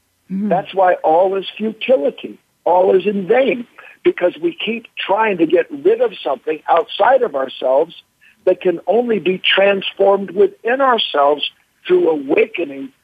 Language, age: English, 60-79